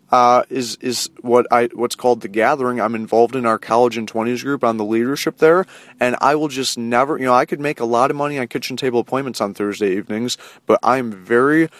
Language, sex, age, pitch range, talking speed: English, male, 30-49, 115-130 Hz, 230 wpm